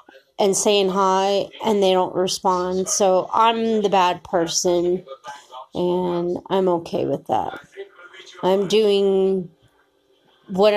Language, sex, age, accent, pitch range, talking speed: English, female, 30-49, American, 180-215 Hz, 110 wpm